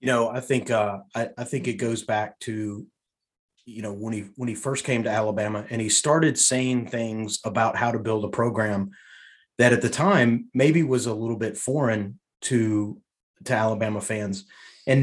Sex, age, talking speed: male, 30-49, 190 wpm